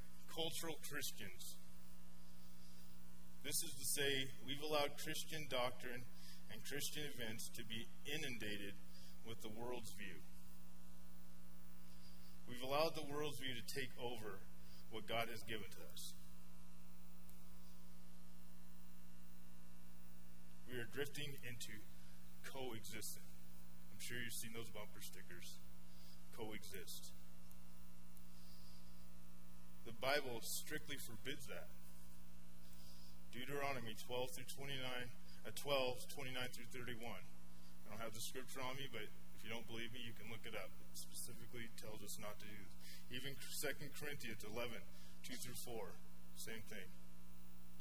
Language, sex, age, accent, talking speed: English, male, 30-49, American, 120 wpm